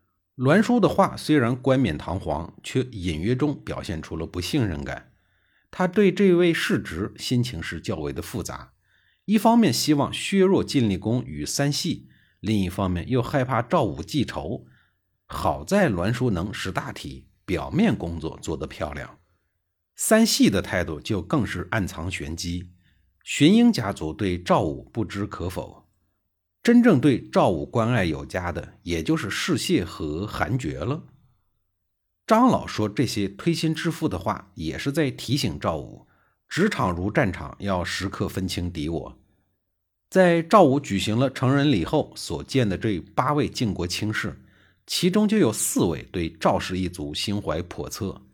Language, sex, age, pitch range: Chinese, male, 50-69, 90-145 Hz